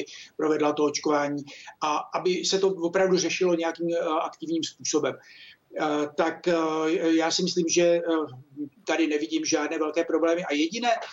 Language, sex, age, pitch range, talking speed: Czech, male, 60-79, 160-175 Hz, 130 wpm